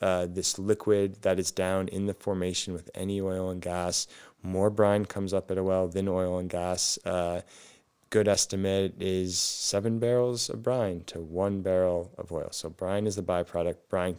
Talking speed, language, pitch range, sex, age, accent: 185 wpm, English, 90-105 Hz, male, 20-39, American